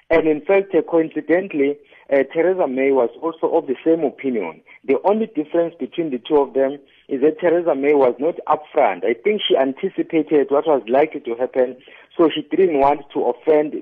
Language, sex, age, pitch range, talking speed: English, male, 50-69, 135-165 Hz, 190 wpm